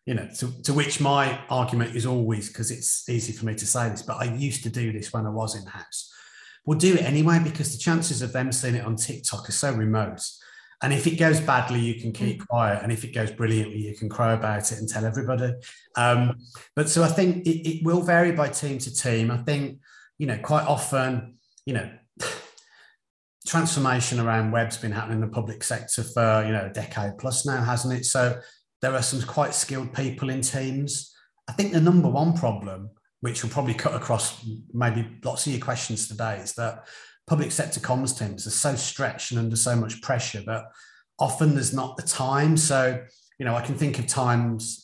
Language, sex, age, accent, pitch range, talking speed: English, male, 30-49, British, 115-140 Hz, 215 wpm